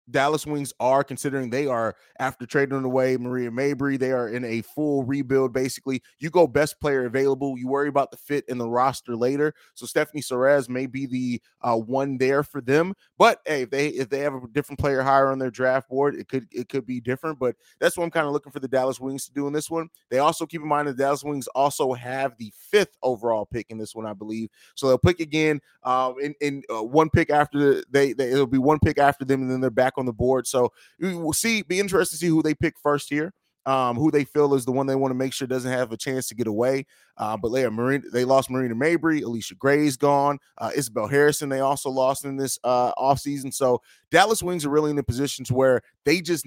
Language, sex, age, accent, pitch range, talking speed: English, male, 20-39, American, 130-145 Hz, 250 wpm